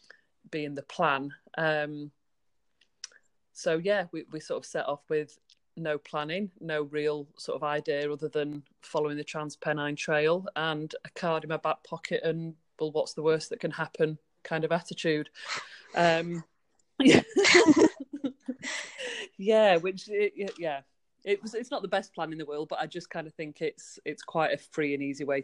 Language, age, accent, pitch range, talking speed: English, 30-49, British, 145-170 Hz, 175 wpm